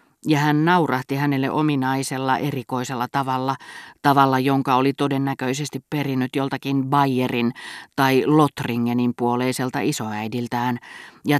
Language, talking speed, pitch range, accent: Finnish, 100 wpm, 120-150 Hz, native